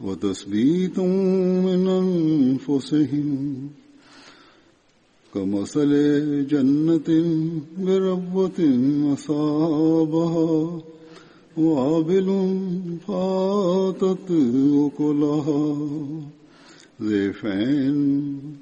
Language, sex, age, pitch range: Tamil, male, 60-79, 145-185 Hz